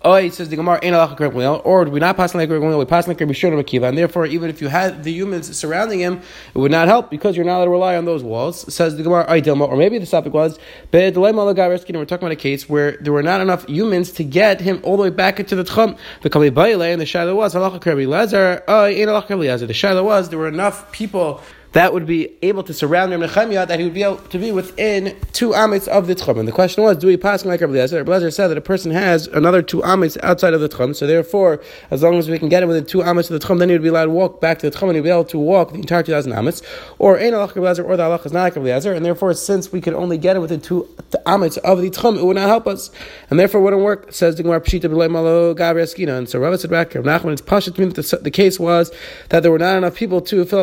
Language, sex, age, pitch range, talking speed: English, male, 30-49, 165-190 Hz, 275 wpm